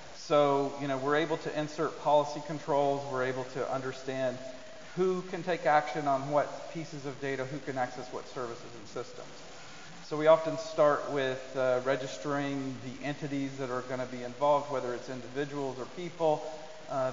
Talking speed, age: 170 wpm, 40-59